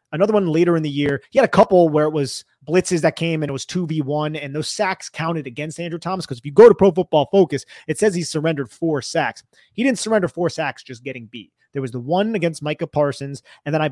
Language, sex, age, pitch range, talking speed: English, male, 30-49, 140-170 Hz, 255 wpm